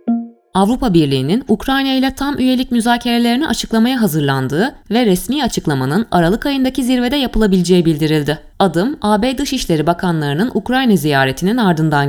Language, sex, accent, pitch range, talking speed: Turkish, female, native, 175-255 Hz, 120 wpm